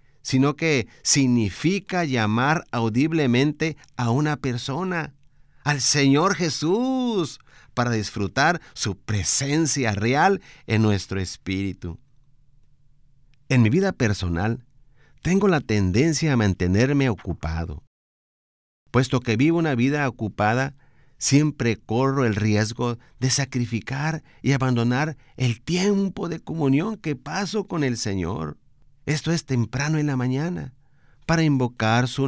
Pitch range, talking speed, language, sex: 115-145 Hz, 115 wpm, Spanish, male